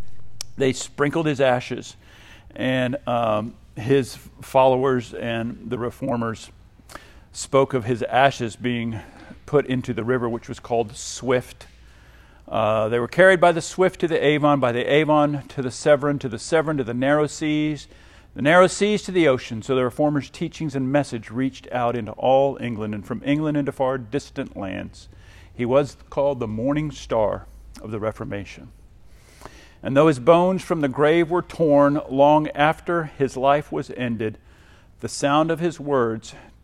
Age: 50-69